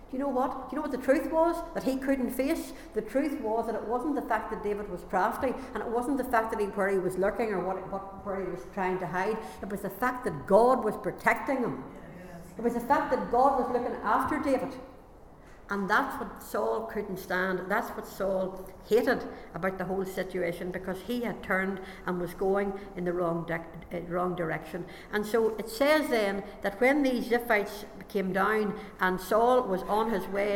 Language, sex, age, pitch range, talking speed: English, female, 60-79, 185-230 Hz, 210 wpm